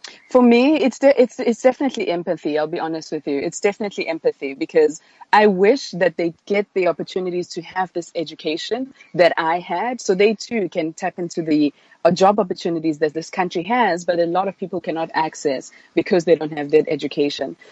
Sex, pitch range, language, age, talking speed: female, 165-210 Hz, English, 20-39, 195 wpm